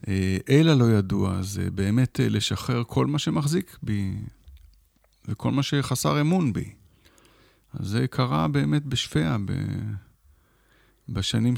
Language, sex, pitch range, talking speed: Hebrew, male, 100-130 Hz, 115 wpm